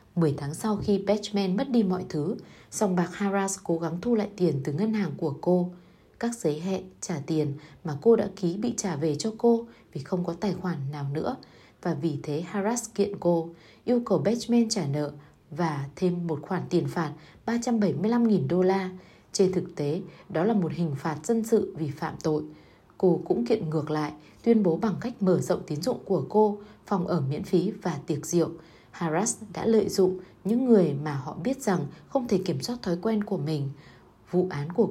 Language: Vietnamese